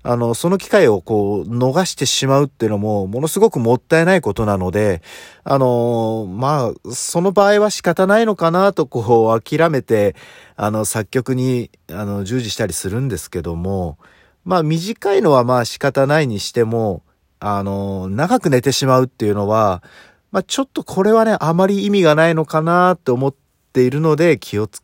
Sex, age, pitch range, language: male, 40-59, 105-155 Hz, Japanese